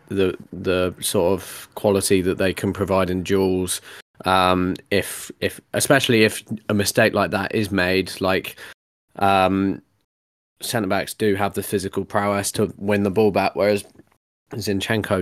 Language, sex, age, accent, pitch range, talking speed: English, male, 20-39, British, 95-105 Hz, 150 wpm